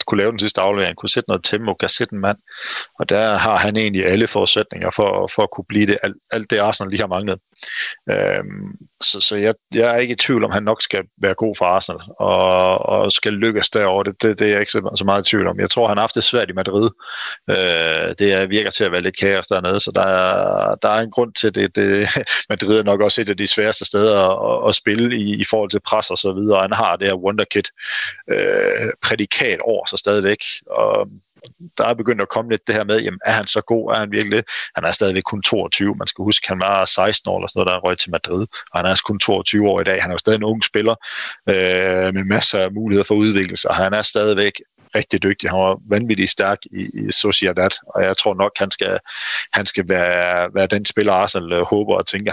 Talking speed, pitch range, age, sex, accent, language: 240 wpm, 95-110 Hz, 30-49, male, native, Danish